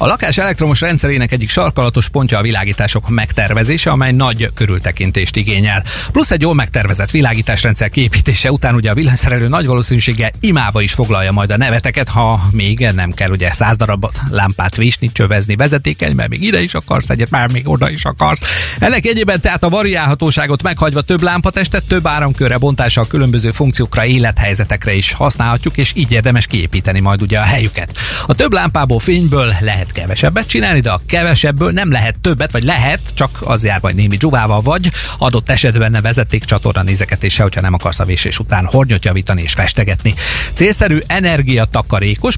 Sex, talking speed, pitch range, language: male, 170 wpm, 100-135 Hz, Hungarian